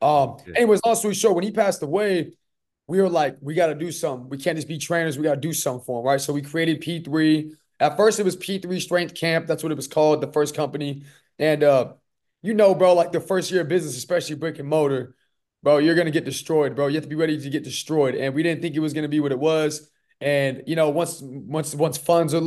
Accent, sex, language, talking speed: American, male, English, 265 wpm